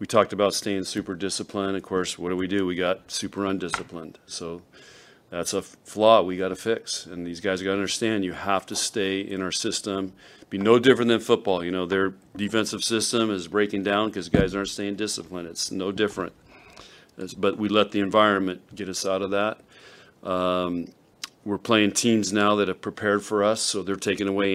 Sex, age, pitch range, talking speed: male, 40-59, 95-105 Hz, 200 wpm